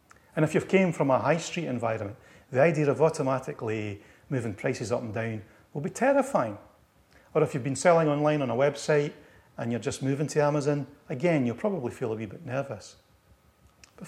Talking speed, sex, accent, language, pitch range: 190 wpm, male, British, English, 110-155 Hz